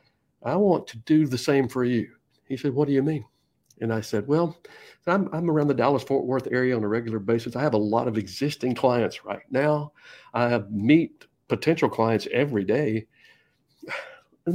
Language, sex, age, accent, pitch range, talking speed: English, male, 60-79, American, 110-140 Hz, 195 wpm